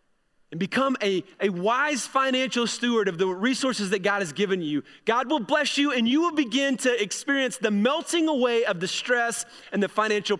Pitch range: 185-245 Hz